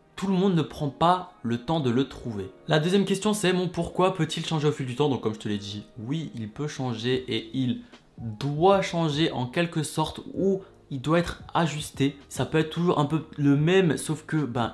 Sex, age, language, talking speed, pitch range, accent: male, 20-39, French, 230 wpm, 130-170 Hz, French